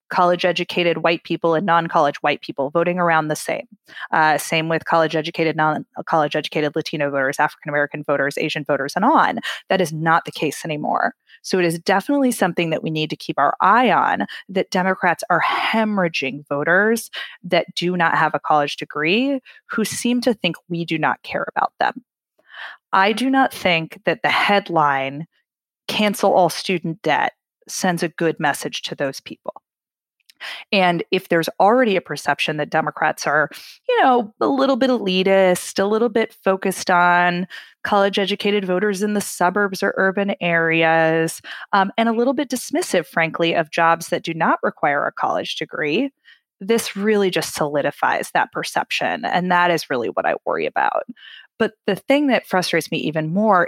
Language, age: English, 20-39